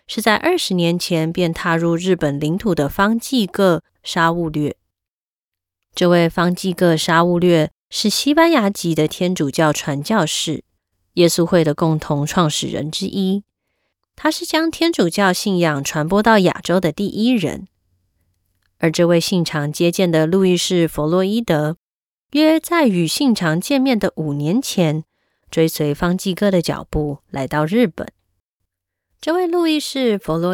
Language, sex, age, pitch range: Chinese, female, 20-39, 150-210 Hz